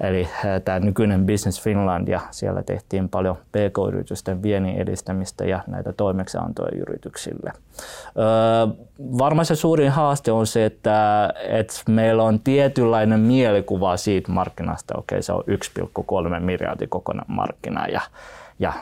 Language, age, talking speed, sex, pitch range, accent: Finnish, 20-39, 130 wpm, male, 95-110 Hz, native